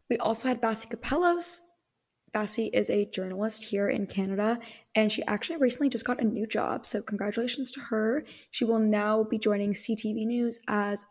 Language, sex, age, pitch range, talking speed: English, female, 10-29, 205-240 Hz, 180 wpm